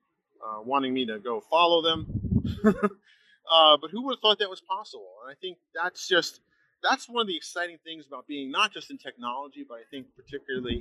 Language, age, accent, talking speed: English, 30-49, American, 205 wpm